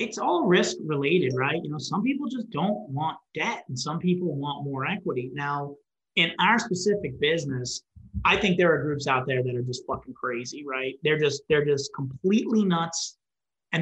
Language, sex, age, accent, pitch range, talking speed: English, male, 30-49, American, 135-170 Hz, 190 wpm